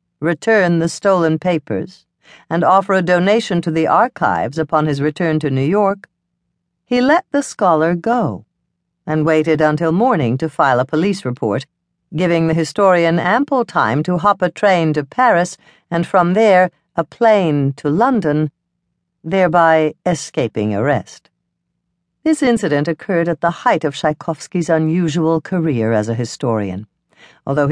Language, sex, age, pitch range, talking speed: English, female, 60-79, 150-190 Hz, 145 wpm